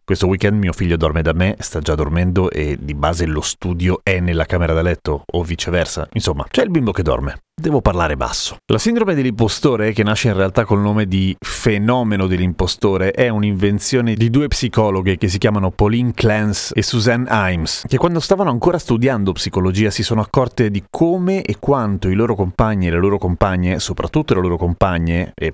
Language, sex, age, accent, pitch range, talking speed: Italian, male, 30-49, native, 95-130 Hz, 190 wpm